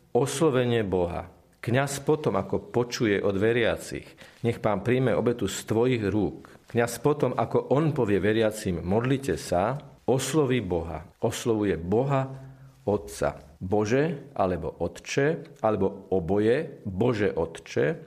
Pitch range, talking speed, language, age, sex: 105-130 Hz, 115 wpm, Slovak, 50-69, male